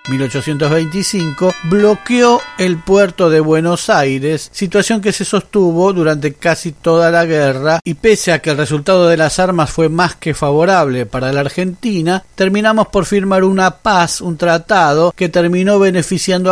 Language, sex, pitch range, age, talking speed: Spanish, male, 150-190 Hz, 40-59, 155 wpm